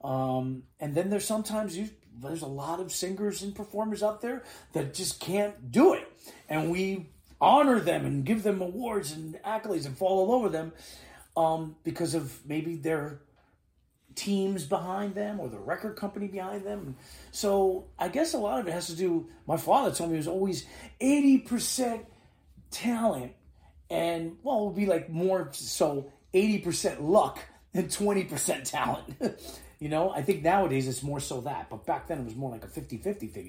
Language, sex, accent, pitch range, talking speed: English, male, American, 130-195 Hz, 180 wpm